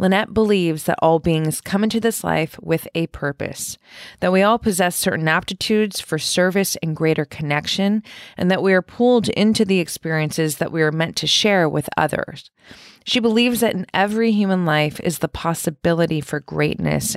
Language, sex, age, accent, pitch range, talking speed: English, female, 20-39, American, 150-190 Hz, 180 wpm